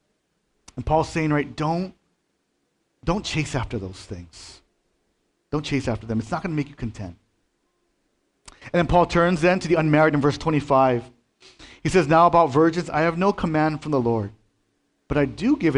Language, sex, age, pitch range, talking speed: English, male, 40-59, 120-155 Hz, 185 wpm